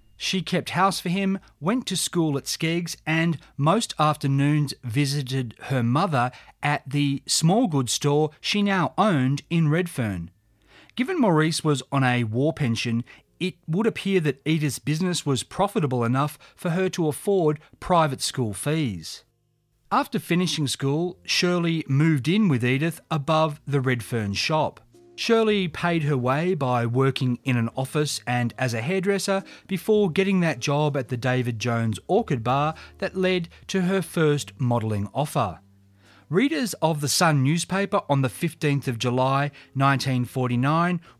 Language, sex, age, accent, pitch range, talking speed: English, male, 30-49, Australian, 130-185 Hz, 150 wpm